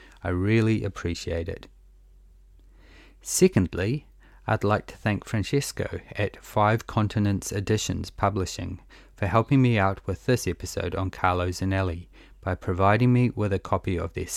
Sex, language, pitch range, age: male, English, 90-105 Hz, 30-49